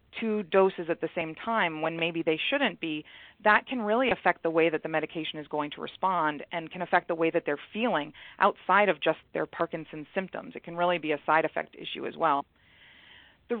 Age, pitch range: 30-49, 165-215 Hz